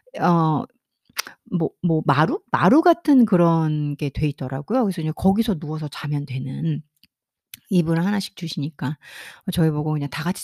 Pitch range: 150-220 Hz